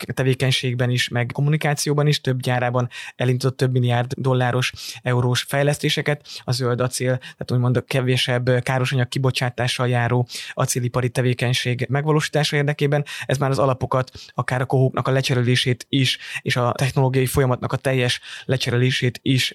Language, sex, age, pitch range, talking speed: Hungarian, male, 20-39, 125-140 Hz, 140 wpm